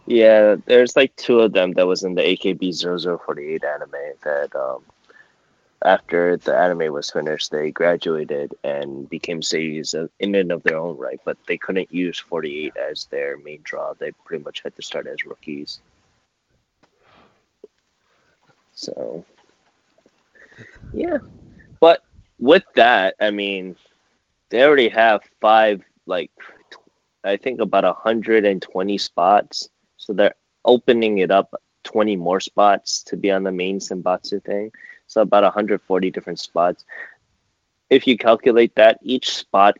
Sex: male